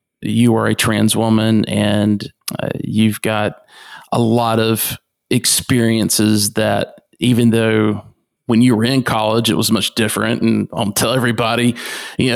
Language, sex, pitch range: English, male, 110-130 Hz